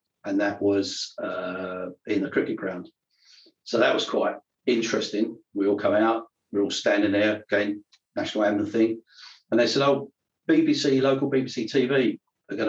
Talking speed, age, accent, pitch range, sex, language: 165 wpm, 40-59, British, 105-145 Hz, male, English